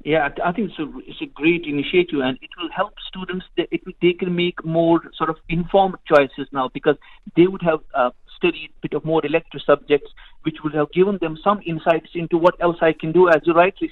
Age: 50-69